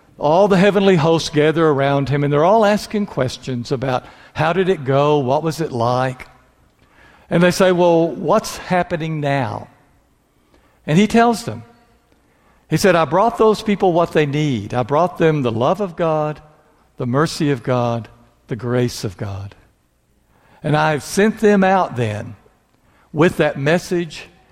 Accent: American